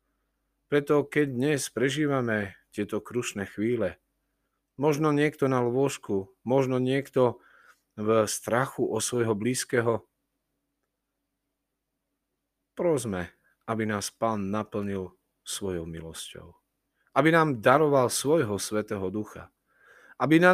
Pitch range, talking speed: 100-140 Hz, 95 wpm